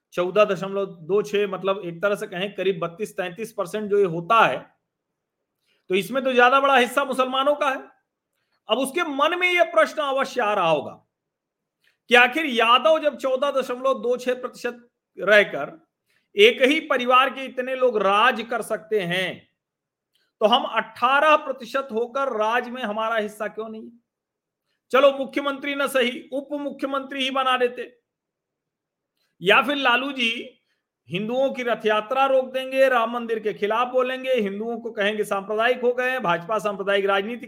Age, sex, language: 40-59, male, Hindi